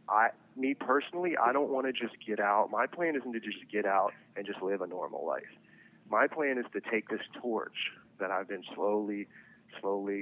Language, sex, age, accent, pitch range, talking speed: English, male, 30-49, American, 100-140 Hz, 205 wpm